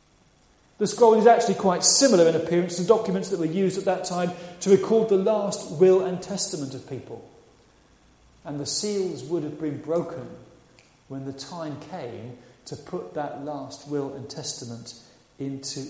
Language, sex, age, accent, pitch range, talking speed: English, male, 40-59, British, 140-190 Hz, 165 wpm